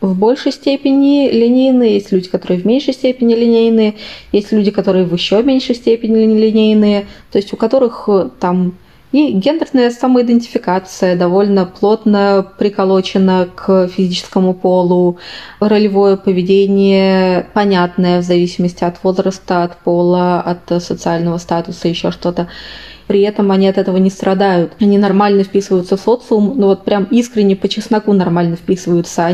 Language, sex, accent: Russian, female, native